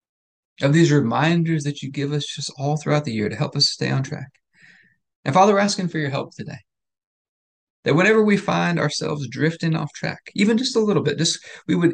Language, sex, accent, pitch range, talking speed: English, male, American, 115-150 Hz, 210 wpm